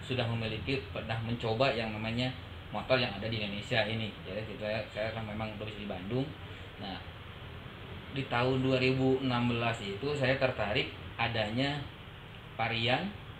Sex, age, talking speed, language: male, 20-39, 120 wpm, Indonesian